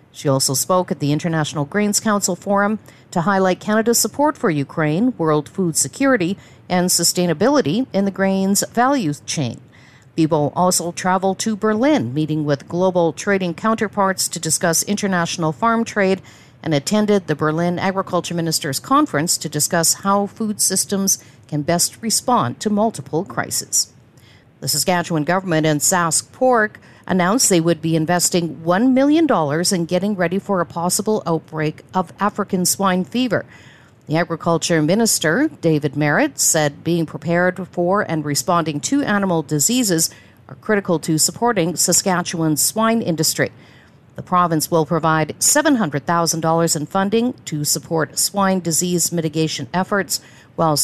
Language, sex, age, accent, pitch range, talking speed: English, female, 50-69, American, 155-200 Hz, 140 wpm